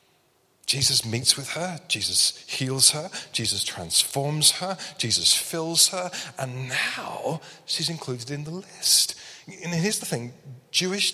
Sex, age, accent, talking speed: male, 40-59, British, 135 wpm